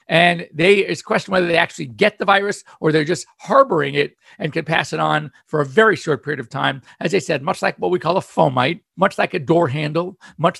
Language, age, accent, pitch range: English, 50-69, American, 140-175 Hz